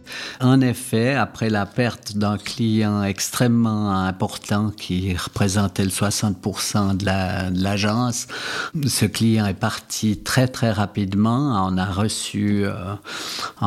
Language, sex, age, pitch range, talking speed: French, male, 50-69, 100-115 Hz, 125 wpm